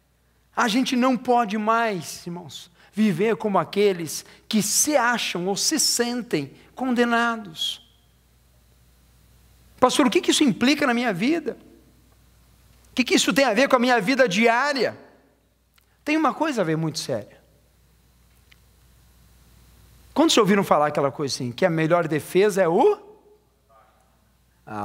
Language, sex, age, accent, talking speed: Portuguese, male, 50-69, Brazilian, 140 wpm